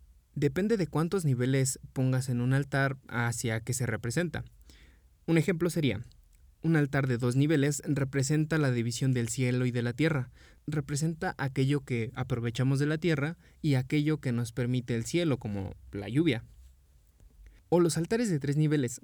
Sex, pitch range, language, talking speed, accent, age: male, 120-155 Hz, Spanish, 165 wpm, Mexican, 20-39